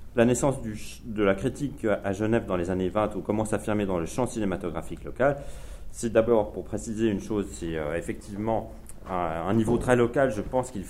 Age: 30-49